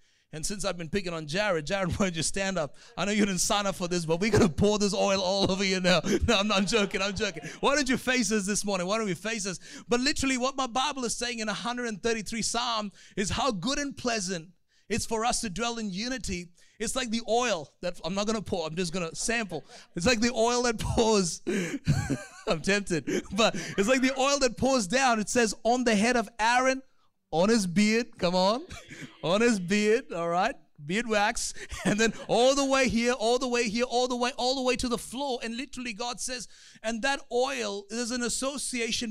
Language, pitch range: English, 180-240 Hz